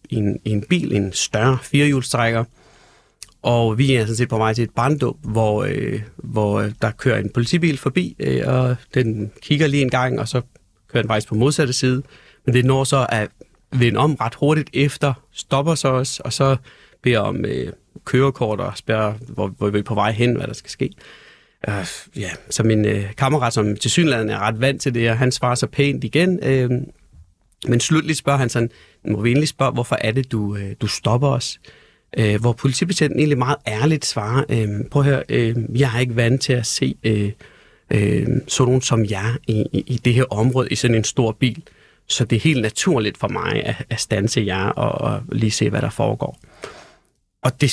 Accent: native